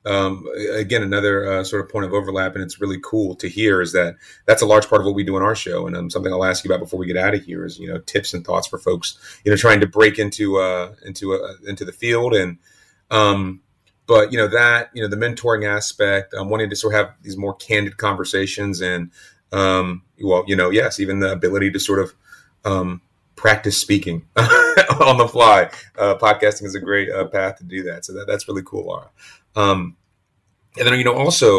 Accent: American